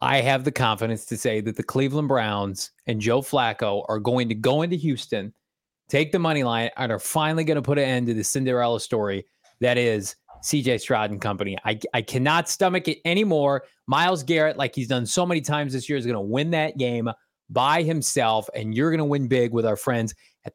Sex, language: male, English